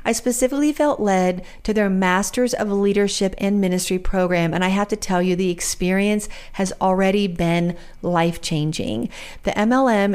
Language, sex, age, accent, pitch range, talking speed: English, female, 40-59, American, 185-225 Hz, 155 wpm